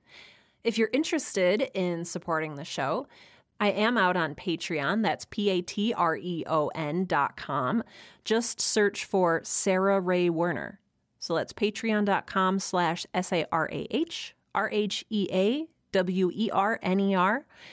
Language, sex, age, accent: English, female, 30-49, American